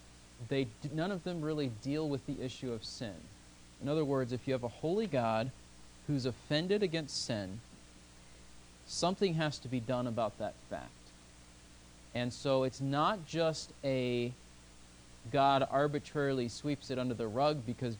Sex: male